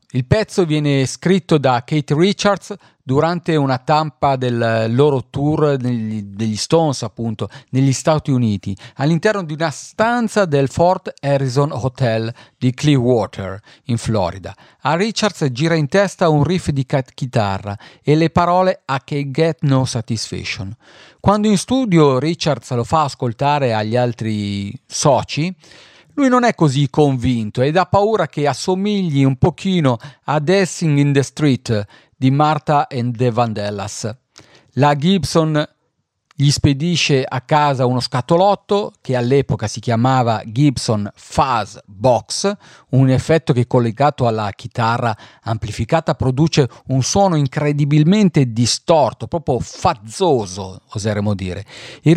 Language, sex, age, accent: Italian, male, 50-69, native